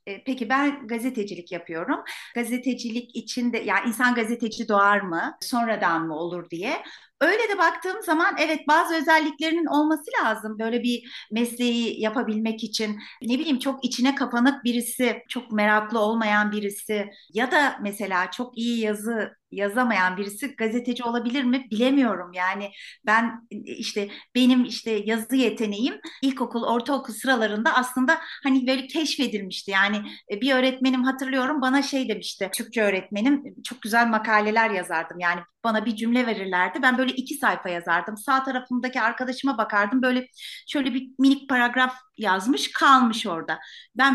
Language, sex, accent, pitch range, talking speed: Turkish, female, native, 215-270 Hz, 140 wpm